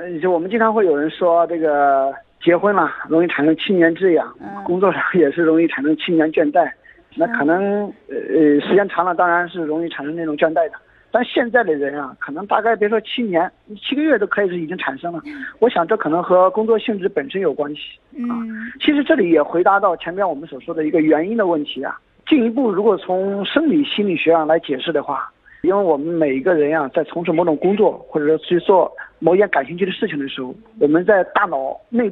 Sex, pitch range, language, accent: male, 160-225 Hz, Chinese, native